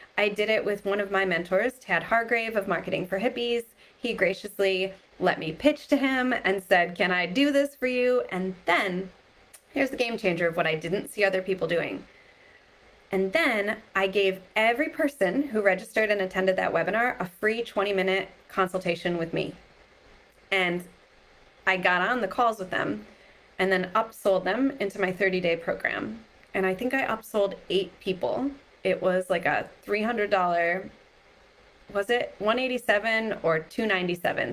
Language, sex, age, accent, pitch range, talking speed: English, female, 20-39, American, 185-235 Hz, 165 wpm